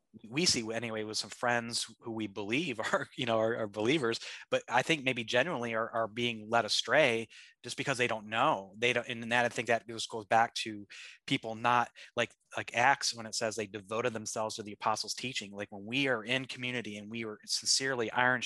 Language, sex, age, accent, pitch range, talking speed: English, male, 30-49, American, 110-120 Hz, 220 wpm